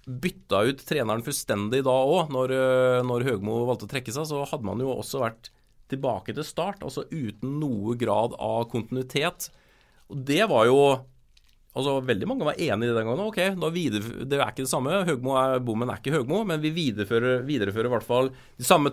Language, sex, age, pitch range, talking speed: English, male, 30-49, 115-150 Hz, 195 wpm